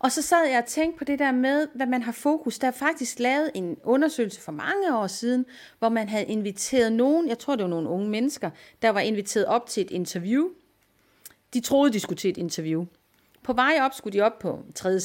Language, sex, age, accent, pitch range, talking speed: Danish, female, 30-49, native, 175-250 Hz, 230 wpm